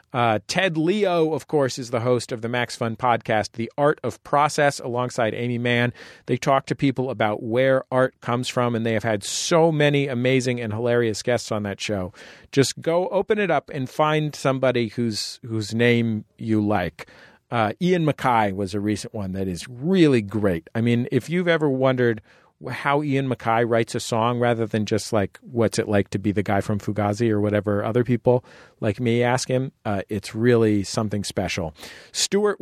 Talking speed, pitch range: 195 wpm, 110-140 Hz